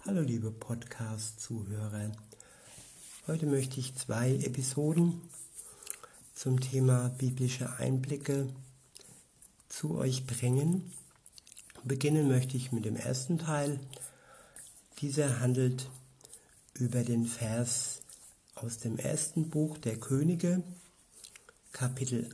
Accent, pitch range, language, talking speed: German, 120-140 Hz, German, 90 wpm